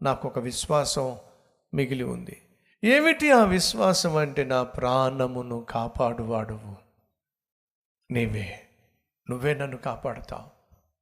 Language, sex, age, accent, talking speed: Telugu, male, 50-69, native, 75 wpm